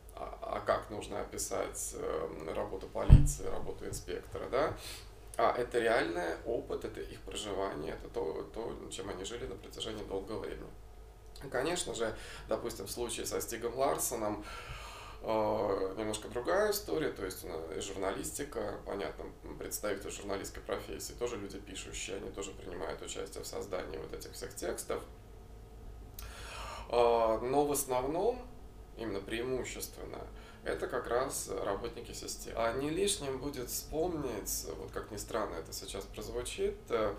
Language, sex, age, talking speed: Russian, male, 20-39, 125 wpm